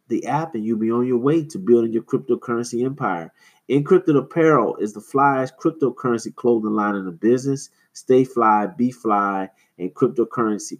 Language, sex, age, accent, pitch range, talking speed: English, male, 30-49, American, 110-140 Hz, 165 wpm